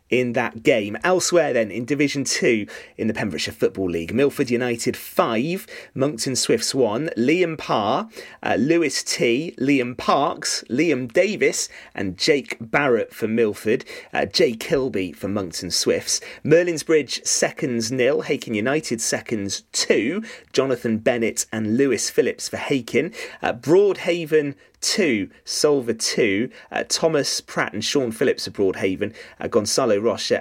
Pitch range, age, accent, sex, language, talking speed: 120-175 Hz, 30-49, British, male, English, 135 wpm